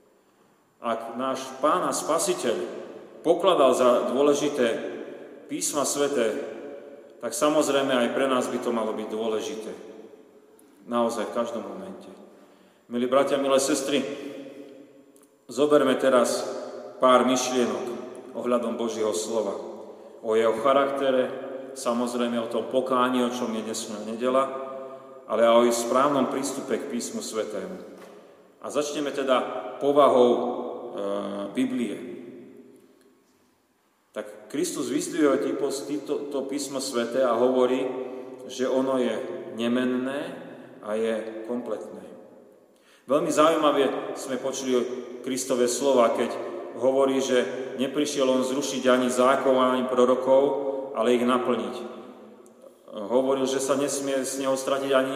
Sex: male